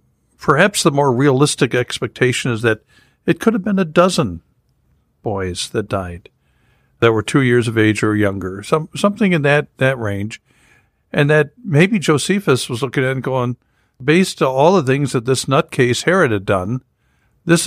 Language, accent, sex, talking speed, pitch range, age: English, American, male, 175 wpm, 110-145 Hz, 60-79